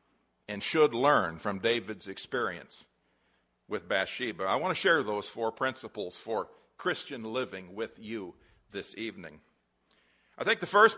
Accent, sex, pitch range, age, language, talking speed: American, male, 100-155 Hz, 50-69, English, 140 wpm